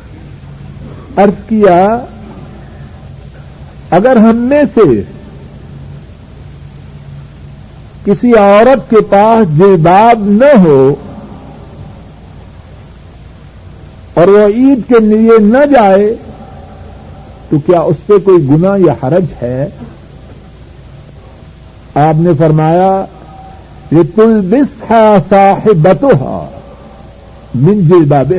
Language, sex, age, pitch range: Urdu, male, 60-79, 150-220 Hz